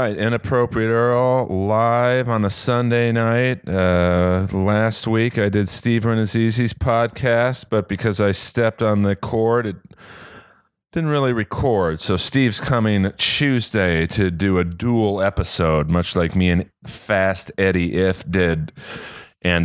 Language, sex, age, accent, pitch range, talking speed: English, male, 30-49, American, 95-115 Hz, 135 wpm